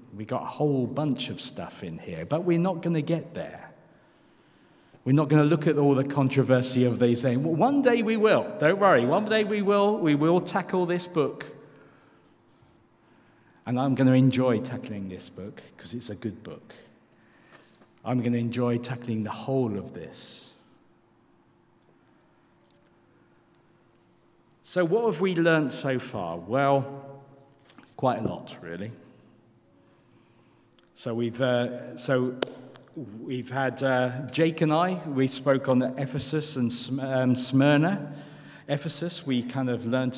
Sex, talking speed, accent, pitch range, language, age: male, 150 wpm, British, 120-165 Hz, English, 50-69